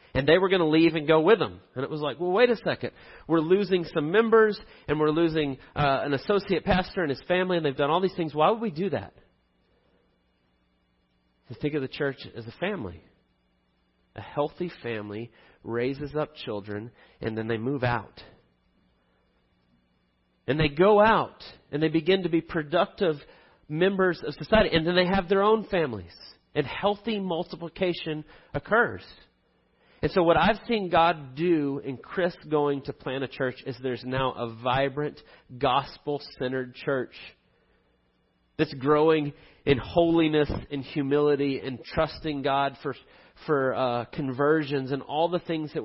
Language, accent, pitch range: English, American, 120-170 Hz